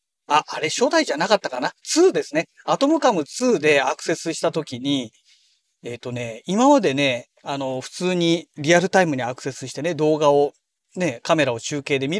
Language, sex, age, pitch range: Japanese, male, 40-59, 130-215 Hz